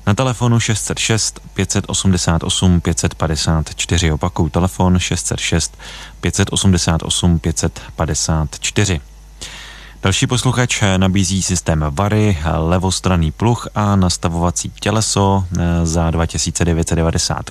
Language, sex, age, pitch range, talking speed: Czech, male, 30-49, 85-100 Hz, 75 wpm